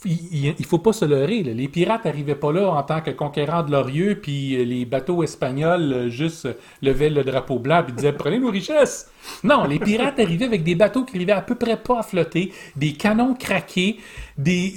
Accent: Canadian